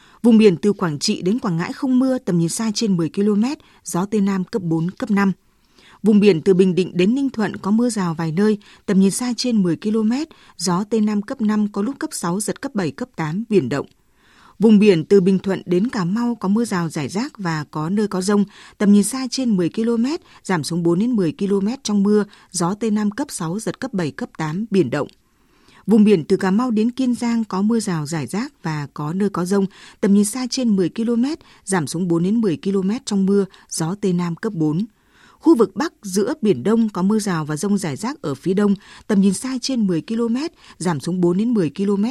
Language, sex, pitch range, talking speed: Vietnamese, female, 185-230 Hz, 240 wpm